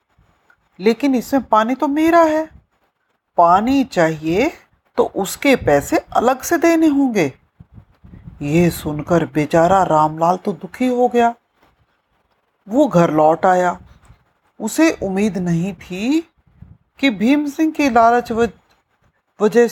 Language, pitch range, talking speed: Hindi, 160-265 Hz, 115 wpm